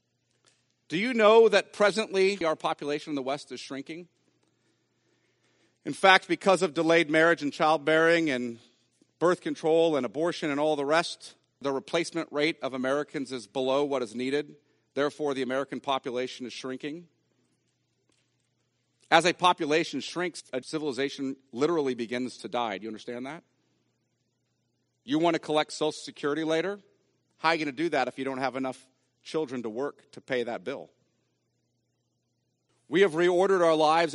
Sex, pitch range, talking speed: male, 125-170 Hz, 160 wpm